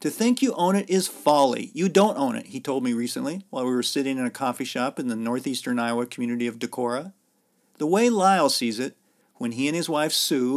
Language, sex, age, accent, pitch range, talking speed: English, male, 50-69, American, 130-190 Hz, 235 wpm